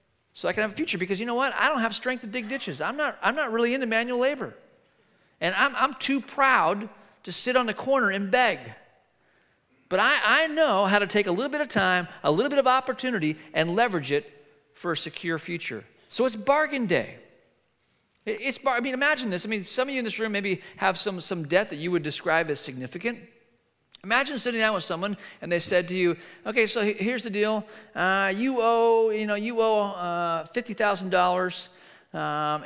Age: 40-59